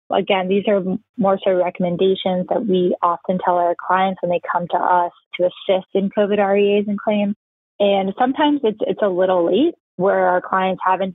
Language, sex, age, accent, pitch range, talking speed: English, female, 20-39, American, 180-210 Hz, 190 wpm